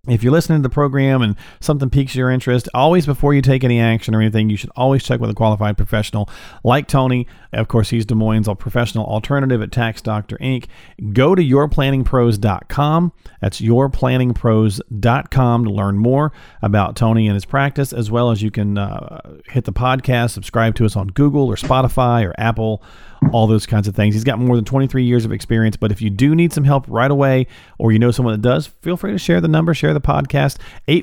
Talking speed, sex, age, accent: 215 wpm, male, 40-59, American